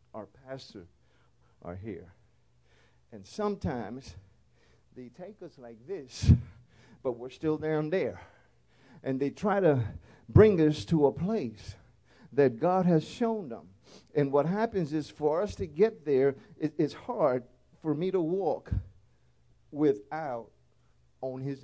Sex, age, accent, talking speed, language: male, 50-69, American, 135 wpm, English